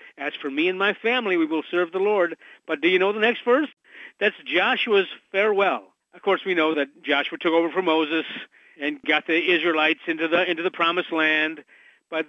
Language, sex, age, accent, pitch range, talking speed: English, male, 50-69, American, 165-220 Hz, 205 wpm